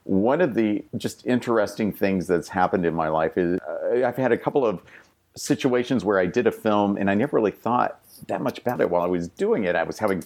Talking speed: 240 wpm